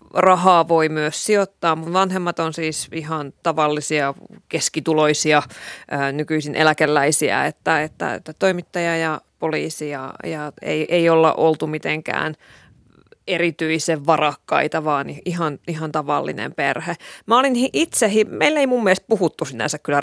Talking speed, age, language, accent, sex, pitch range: 125 wpm, 30-49, Finnish, native, female, 155-190 Hz